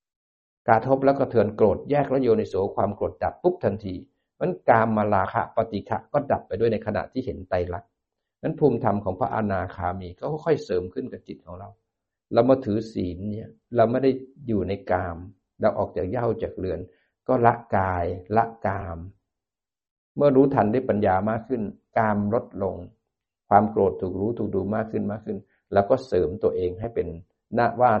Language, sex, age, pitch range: Thai, male, 60-79, 95-125 Hz